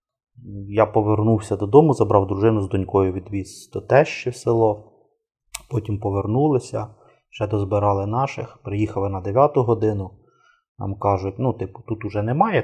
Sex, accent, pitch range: male, native, 100-120 Hz